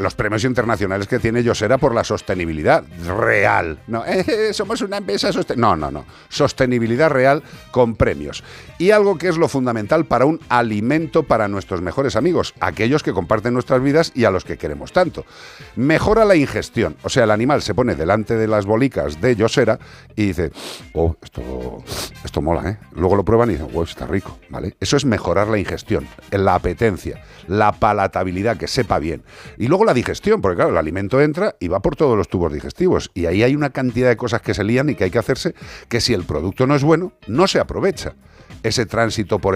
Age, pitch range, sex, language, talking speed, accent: 50-69, 100-135 Hz, male, Spanish, 205 wpm, Spanish